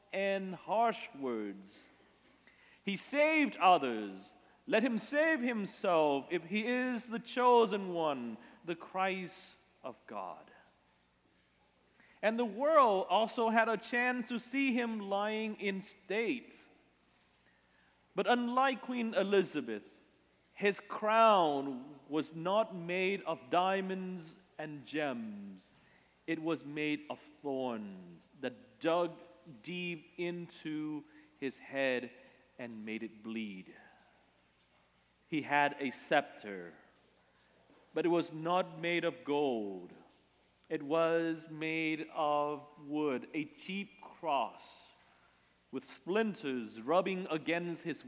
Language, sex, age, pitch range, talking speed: English, male, 40-59, 135-200 Hz, 105 wpm